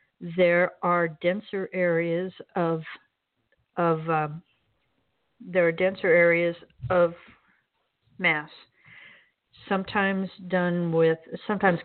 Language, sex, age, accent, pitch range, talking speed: English, female, 50-69, American, 165-185 Hz, 85 wpm